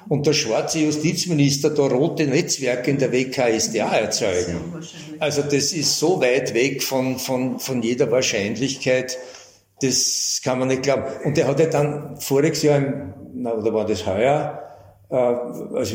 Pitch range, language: 130-170 Hz, German